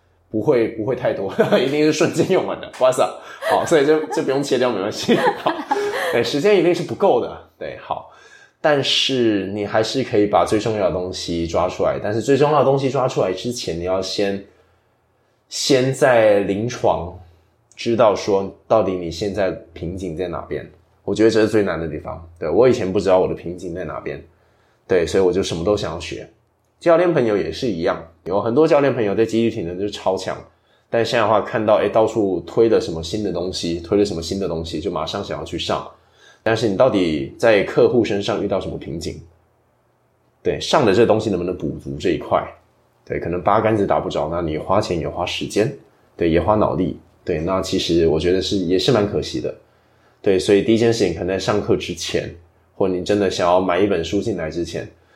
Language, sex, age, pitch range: English, male, 20-39, 90-115 Hz